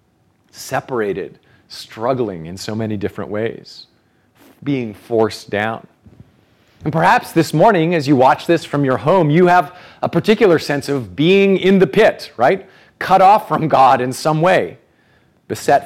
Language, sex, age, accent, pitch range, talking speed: English, male, 40-59, American, 110-155 Hz, 150 wpm